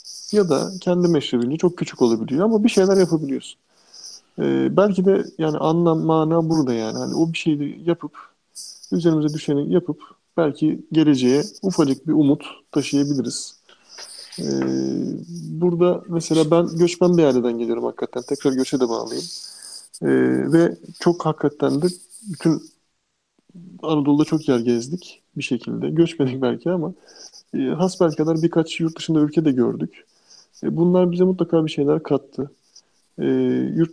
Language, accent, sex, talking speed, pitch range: Turkish, native, male, 140 wpm, 140-170 Hz